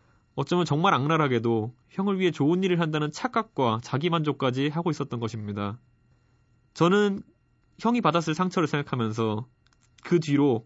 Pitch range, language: 120-180 Hz, Korean